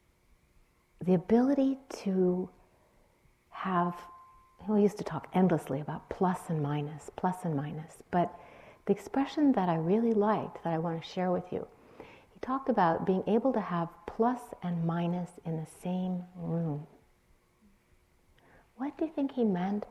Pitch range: 165-220 Hz